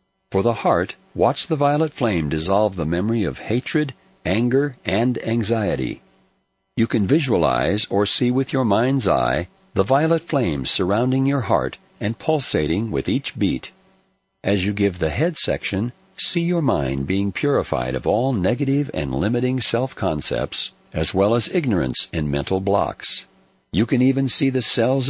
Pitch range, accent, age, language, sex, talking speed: 90-130 Hz, American, 60-79, English, male, 155 wpm